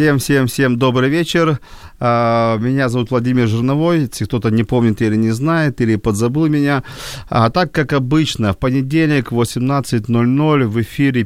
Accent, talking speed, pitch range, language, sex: native, 145 wpm, 110-135 Hz, Ukrainian, male